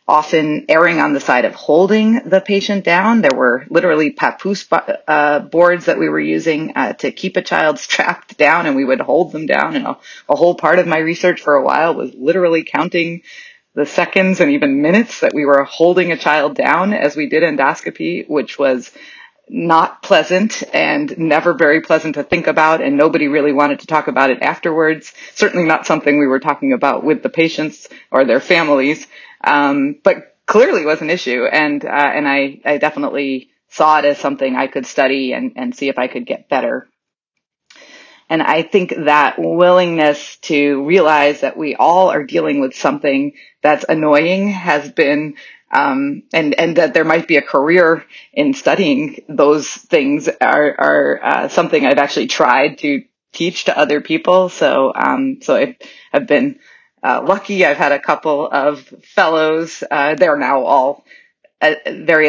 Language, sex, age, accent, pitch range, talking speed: English, female, 30-49, American, 145-210 Hz, 180 wpm